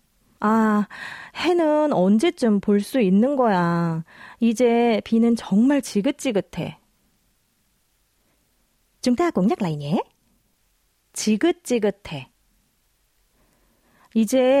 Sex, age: female, 30-49